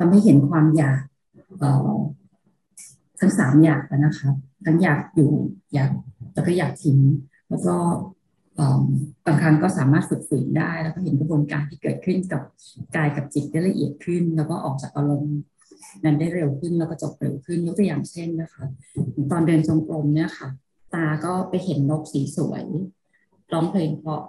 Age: 30-49